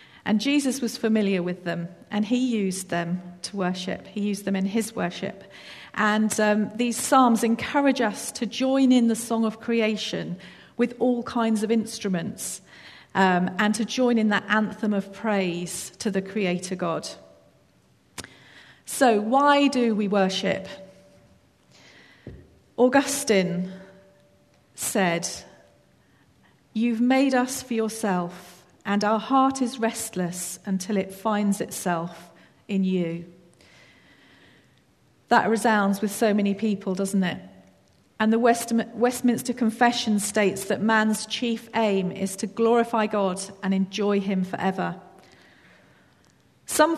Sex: female